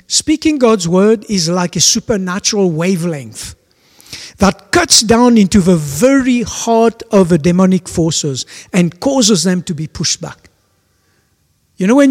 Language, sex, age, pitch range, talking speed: English, male, 60-79, 145-205 Hz, 145 wpm